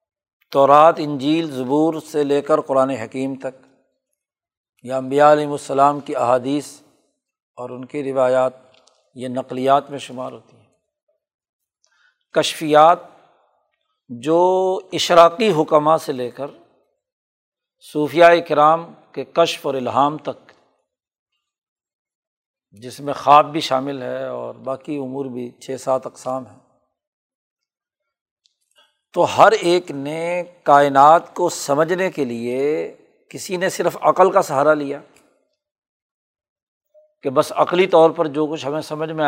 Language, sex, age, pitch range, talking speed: Urdu, male, 50-69, 135-170 Hz, 120 wpm